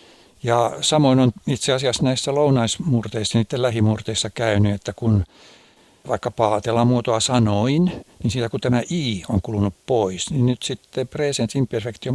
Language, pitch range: Finnish, 110-140 Hz